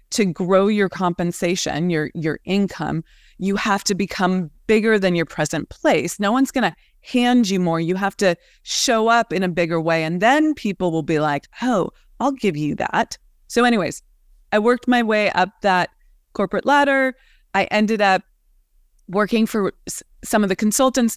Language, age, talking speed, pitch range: English, 20-39, 175 wpm, 185-240 Hz